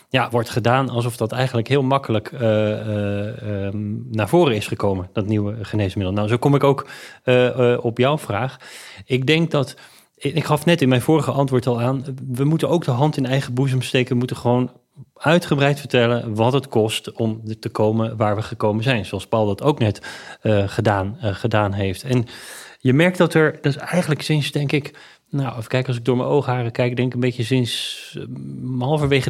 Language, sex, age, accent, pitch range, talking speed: Dutch, male, 30-49, Dutch, 110-135 Hz, 205 wpm